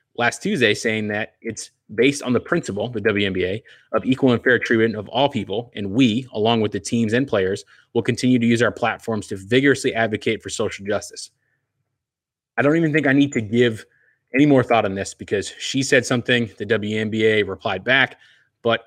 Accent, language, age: American, English, 30-49